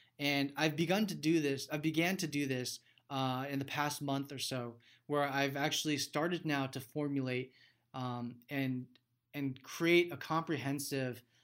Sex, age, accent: male, 20-39, American